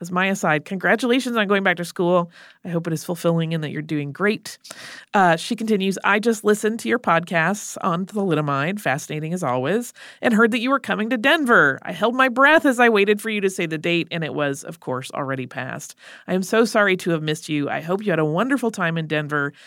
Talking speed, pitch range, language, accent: 240 wpm, 155-215 Hz, English, American